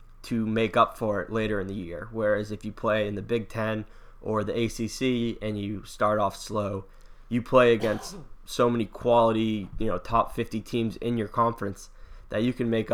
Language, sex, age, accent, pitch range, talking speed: English, male, 20-39, American, 105-115 Hz, 200 wpm